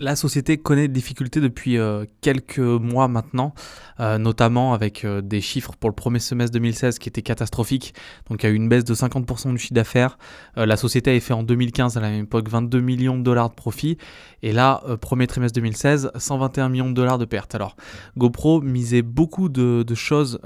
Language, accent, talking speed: French, French, 210 wpm